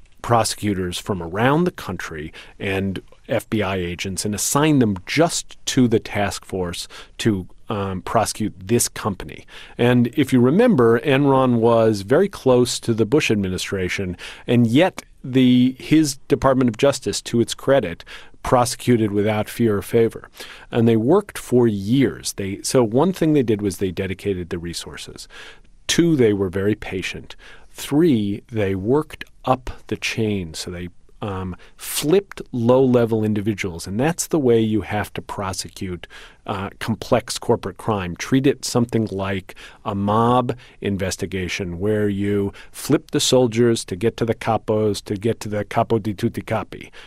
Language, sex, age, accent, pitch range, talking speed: English, male, 40-59, American, 100-125 Hz, 150 wpm